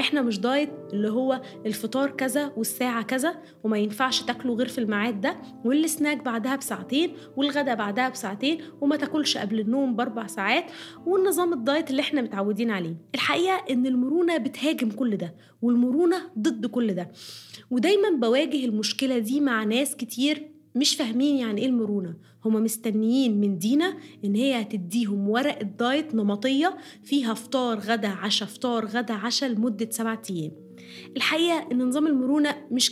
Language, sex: Arabic, female